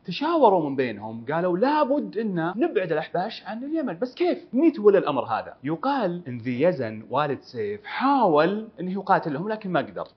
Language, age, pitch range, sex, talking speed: Arabic, 30-49, 155-250 Hz, male, 160 wpm